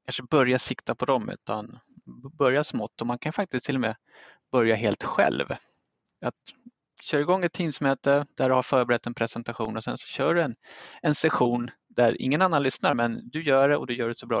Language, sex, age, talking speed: Swedish, male, 20-39, 215 wpm